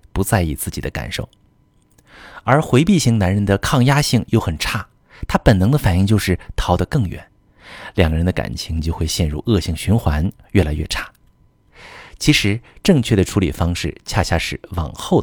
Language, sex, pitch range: Chinese, male, 85-110 Hz